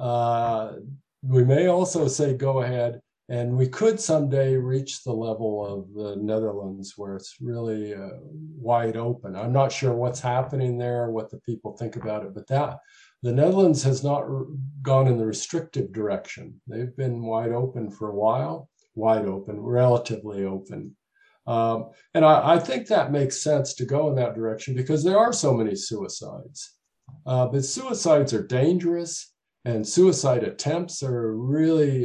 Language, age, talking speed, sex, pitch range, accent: English, 50-69, 165 wpm, male, 110-140 Hz, American